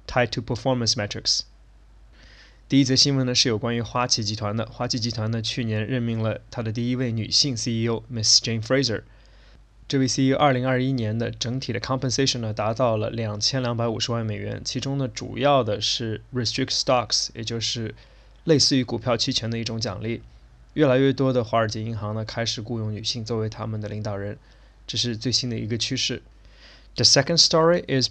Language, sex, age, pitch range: Chinese, male, 20-39, 110-130 Hz